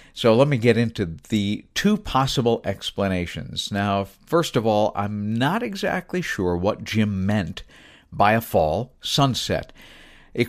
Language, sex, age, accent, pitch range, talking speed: English, male, 50-69, American, 100-130 Hz, 145 wpm